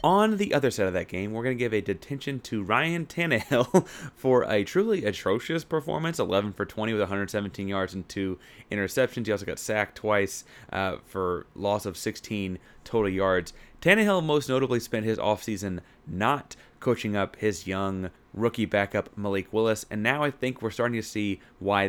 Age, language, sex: 30-49, English, male